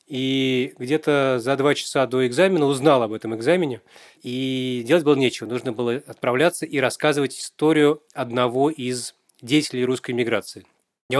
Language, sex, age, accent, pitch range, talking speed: Russian, male, 20-39, native, 125-155 Hz, 145 wpm